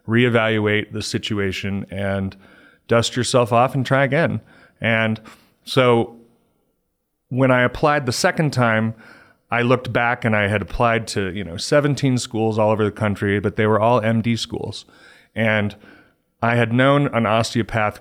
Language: English